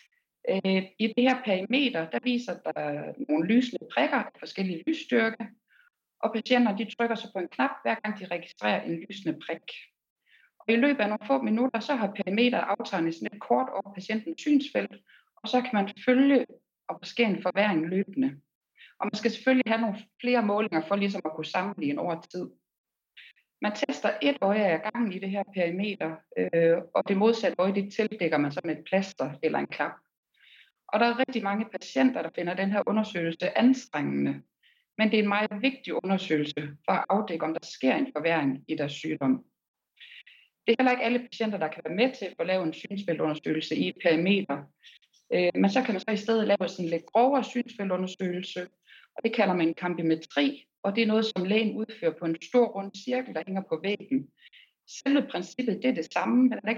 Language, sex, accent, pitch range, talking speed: Danish, female, native, 175-240 Hz, 190 wpm